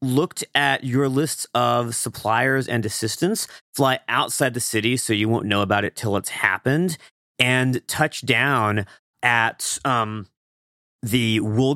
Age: 40-59